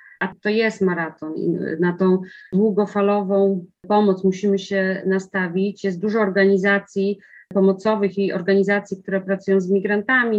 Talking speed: 125 wpm